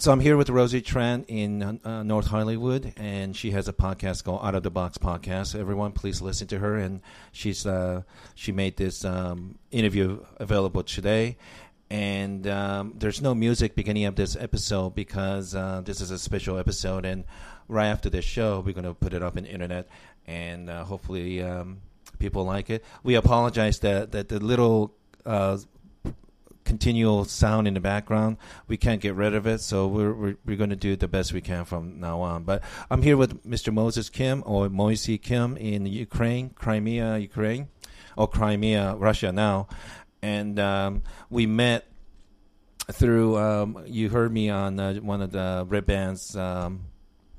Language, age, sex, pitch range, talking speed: English, 40-59, male, 95-110 Hz, 180 wpm